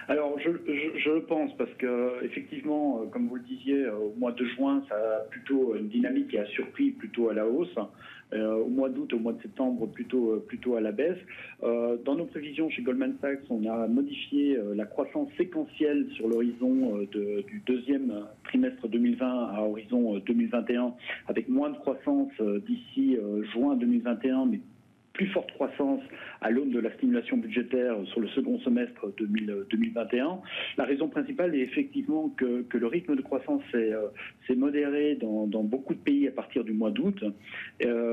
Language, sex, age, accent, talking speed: French, male, 40-59, French, 180 wpm